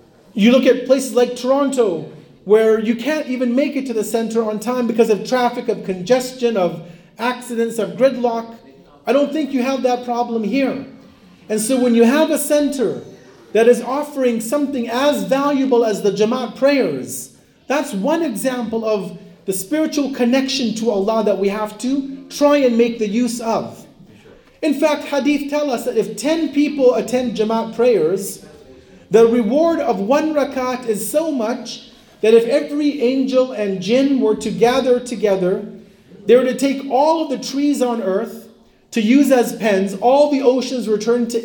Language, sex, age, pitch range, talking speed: English, male, 40-59, 220-275 Hz, 175 wpm